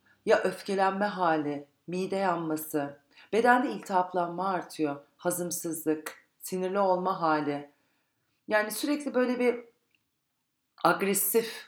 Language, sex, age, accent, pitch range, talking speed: Turkish, female, 40-59, native, 165-225 Hz, 85 wpm